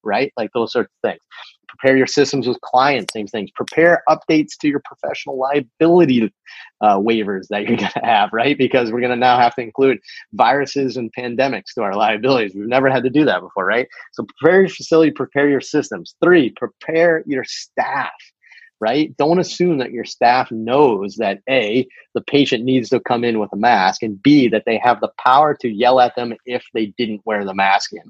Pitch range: 110-140 Hz